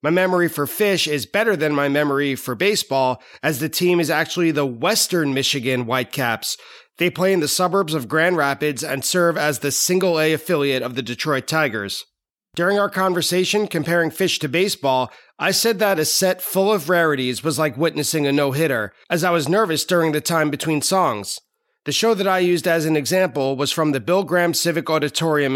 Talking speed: 195 wpm